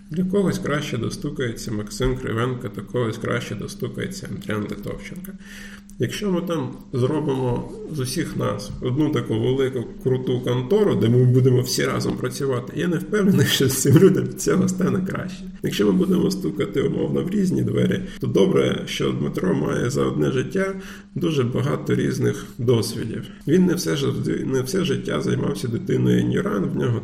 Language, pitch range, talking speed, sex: Ukrainian, 120-190 Hz, 155 wpm, male